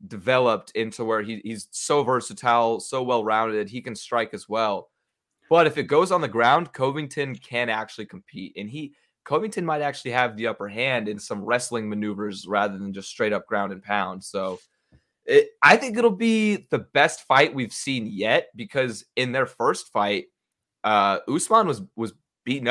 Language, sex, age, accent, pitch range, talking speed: English, male, 20-39, American, 110-135 Hz, 175 wpm